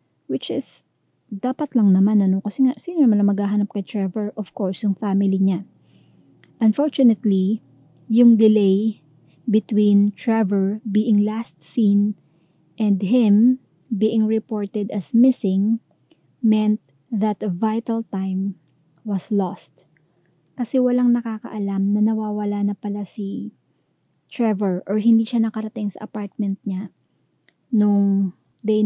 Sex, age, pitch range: female, 20-39, 190-220 Hz